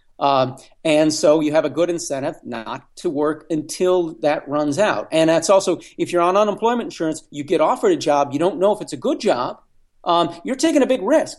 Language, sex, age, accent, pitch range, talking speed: English, male, 40-59, American, 155-200 Hz, 220 wpm